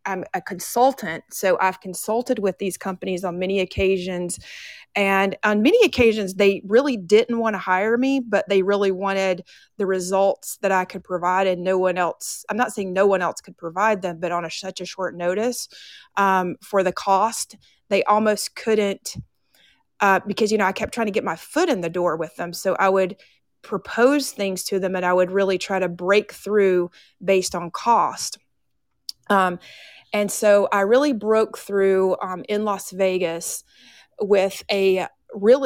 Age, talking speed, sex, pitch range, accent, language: 30-49, 180 wpm, female, 180-210 Hz, American, English